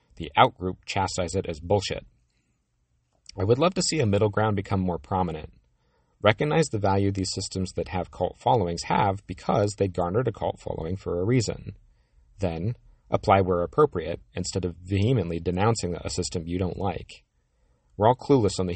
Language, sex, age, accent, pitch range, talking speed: English, male, 40-59, American, 85-105 Hz, 175 wpm